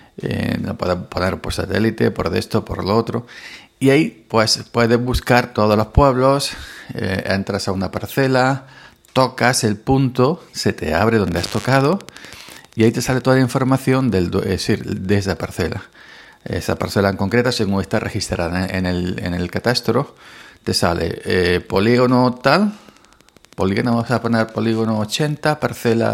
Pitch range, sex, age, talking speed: 90-120 Hz, male, 50-69, 160 wpm